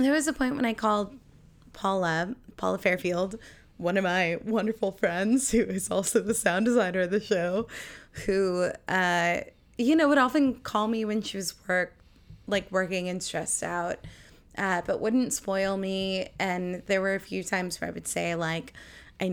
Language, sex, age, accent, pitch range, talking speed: English, female, 20-39, American, 175-200 Hz, 180 wpm